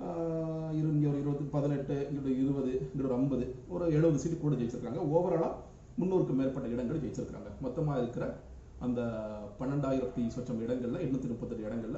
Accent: native